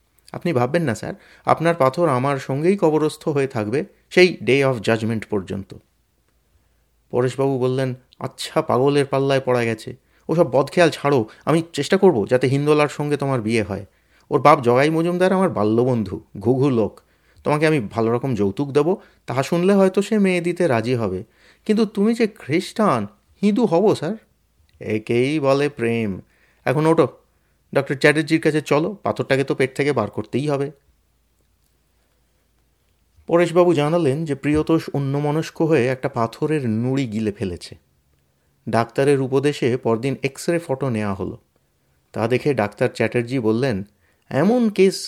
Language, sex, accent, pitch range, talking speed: Bengali, male, native, 115-165 Hz, 140 wpm